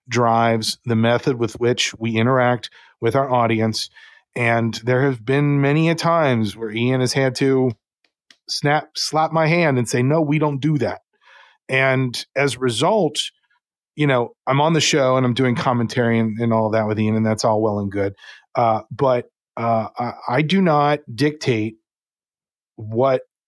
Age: 40-59